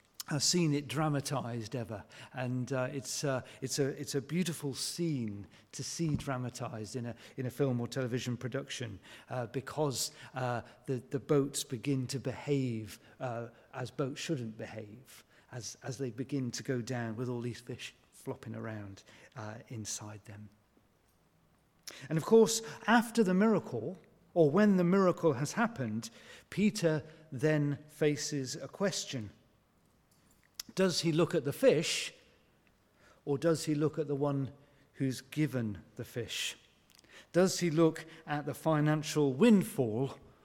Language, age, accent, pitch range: English, 40-59, British, 120-155 Hz